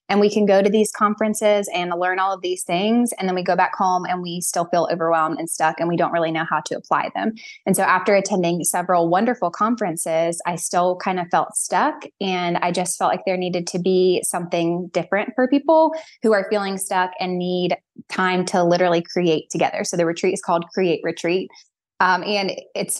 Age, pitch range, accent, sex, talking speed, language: 20-39, 175-210 Hz, American, female, 215 wpm, English